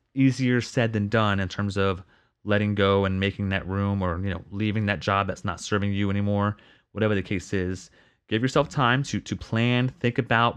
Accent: American